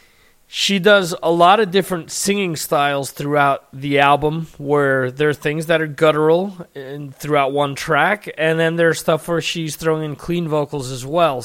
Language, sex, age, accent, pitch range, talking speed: English, male, 30-49, American, 130-160 Hz, 175 wpm